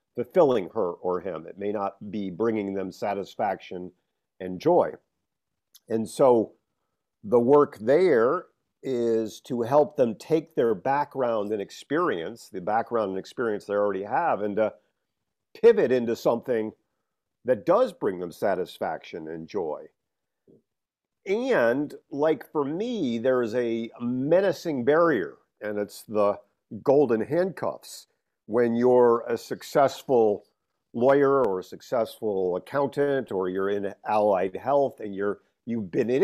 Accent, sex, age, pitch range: American, male, 50-69, 100-135 Hz